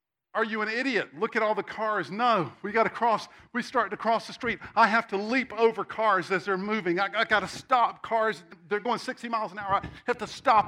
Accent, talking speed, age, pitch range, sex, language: American, 255 wpm, 50-69, 180-235 Hz, male, English